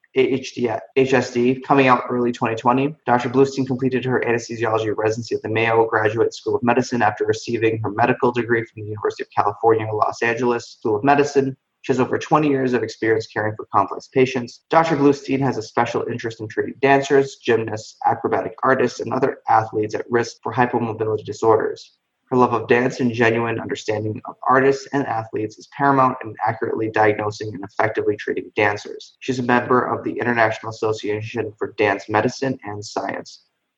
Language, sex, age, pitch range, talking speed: English, male, 20-39, 110-135 Hz, 170 wpm